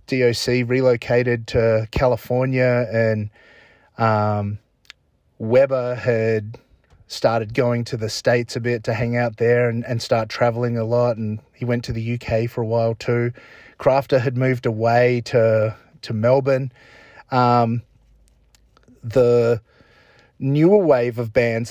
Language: English